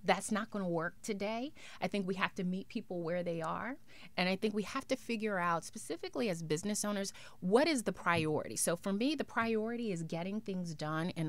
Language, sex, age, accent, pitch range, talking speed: English, female, 30-49, American, 165-205 Hz, 220 wpm